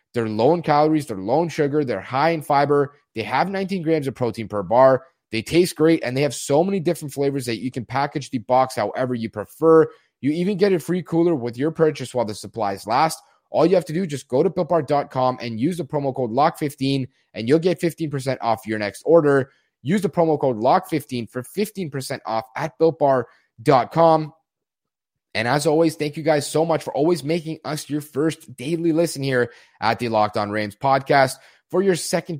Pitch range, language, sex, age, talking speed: 130-165 Hz, English, male, 30-49, 205 wpm